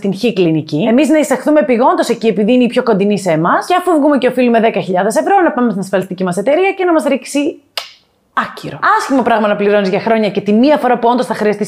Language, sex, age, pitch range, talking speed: Greek, female, 30-49, 200-275 Hz, 230 wpm